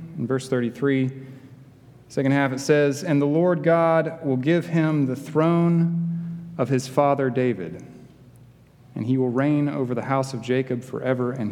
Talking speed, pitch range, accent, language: 160 wpm, 125-170 Hz, American, English